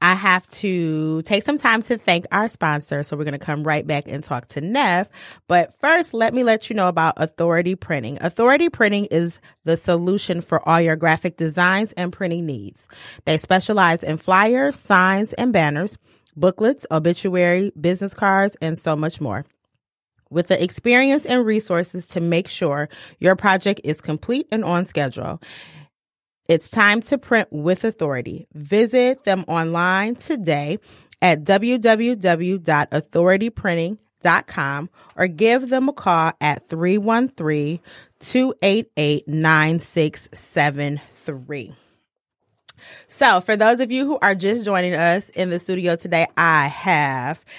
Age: 30-49